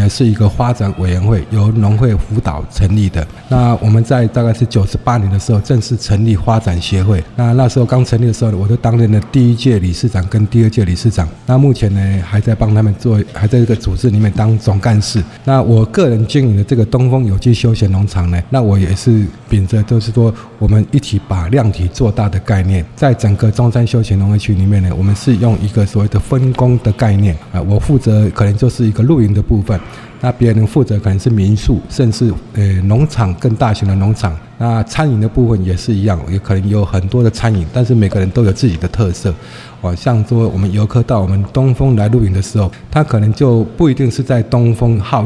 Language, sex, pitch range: Chinese, male, 100-120 Hz